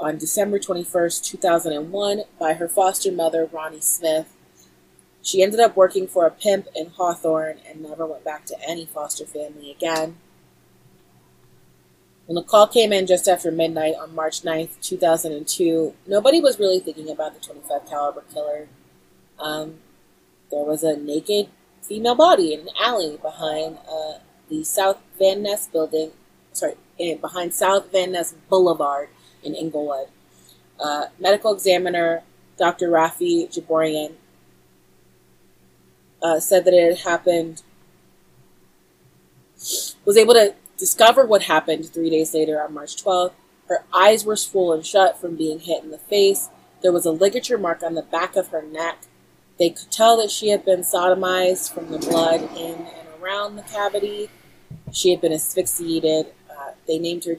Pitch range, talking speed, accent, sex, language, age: 155-190 Hz, 160 wpm, American, female, English, 30-49